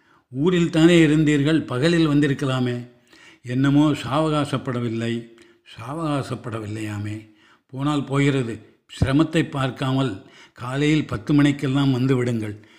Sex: male